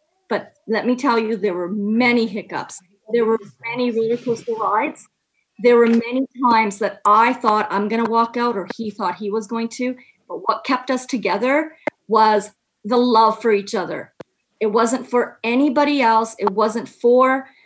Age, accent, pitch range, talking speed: 40-59, American, 220-260 Hz, 180 wpm